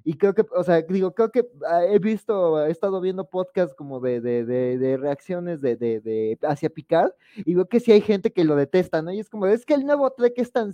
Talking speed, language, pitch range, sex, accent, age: 250 wpm, Spanish, 155-210 Hz, male, Mexican, 20-39